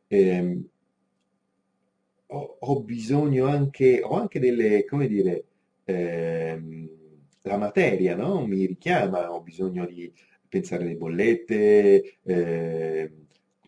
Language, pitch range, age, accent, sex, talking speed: Italian, 85-135 Hz, 30-49, native, male, 95 wpm